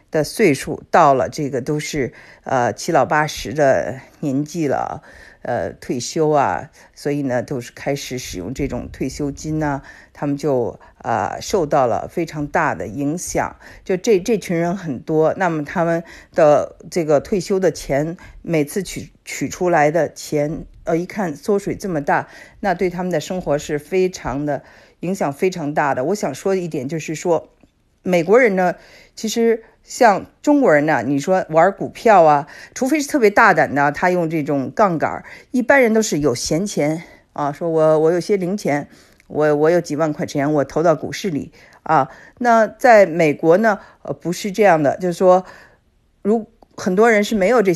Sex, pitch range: female, 150-195 Hz